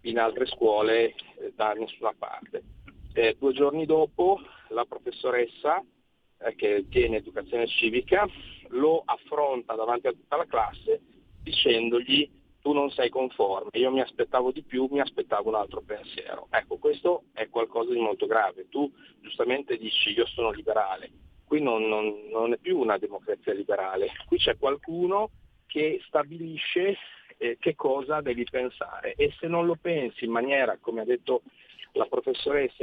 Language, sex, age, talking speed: Italian, male, 40-59, 155 wpm